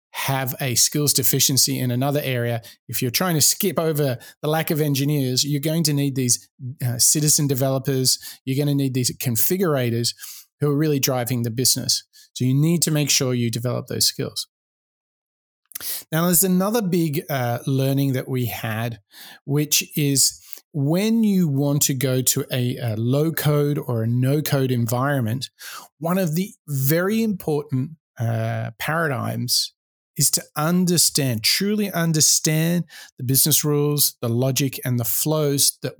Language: English